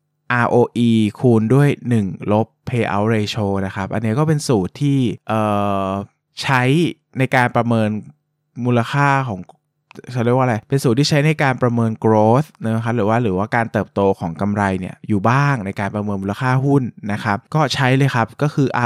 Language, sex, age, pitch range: Thai, male, 20-39, 105-130 Hz